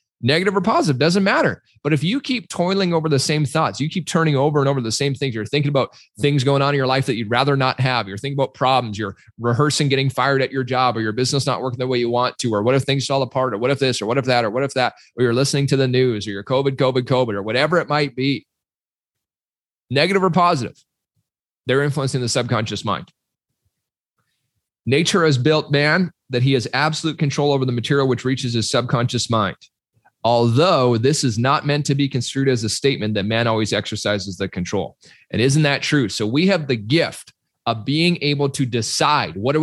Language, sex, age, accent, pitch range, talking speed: English, male, 30-49, American, 120-145 Hz, 225 wpm